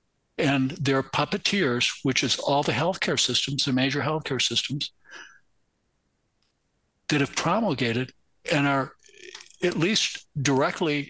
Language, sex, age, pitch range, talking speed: English, male, 60-79, 135-190 Hz, 115 wpm